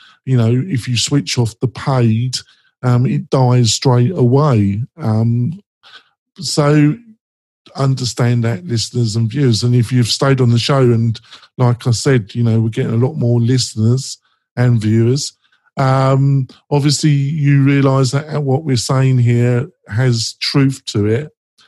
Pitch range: 120-140 Hz